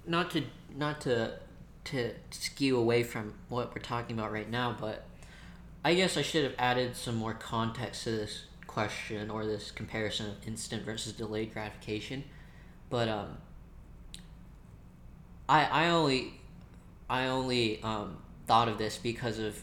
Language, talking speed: English, 145 wpm